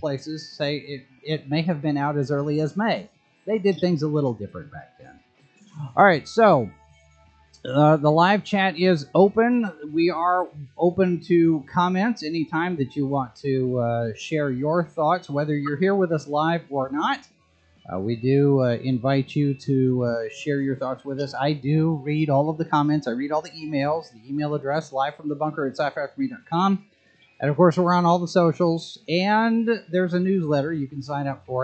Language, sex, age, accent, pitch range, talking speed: English, male, 30-49, American, 135-180 Hz, 190 wpm